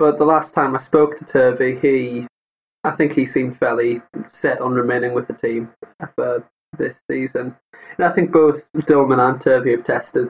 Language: English